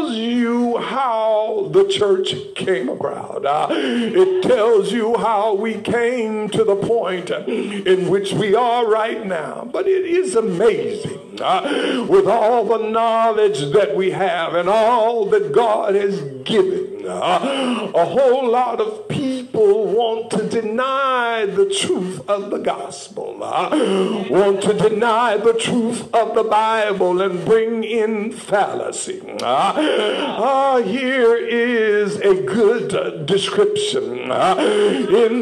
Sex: male